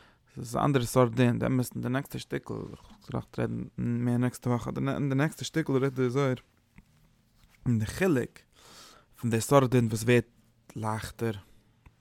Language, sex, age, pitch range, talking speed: English, male, 20-39, 110-125 Hz, 145 wpm